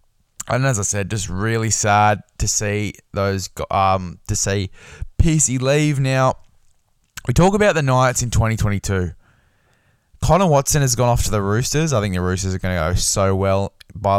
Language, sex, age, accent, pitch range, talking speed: English, male, 20-39, Australian, 105-140 Hz, 180 wpm